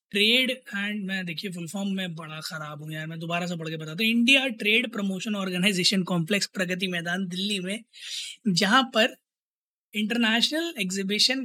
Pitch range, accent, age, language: 180-225 Hz, native, 20-39, Hindi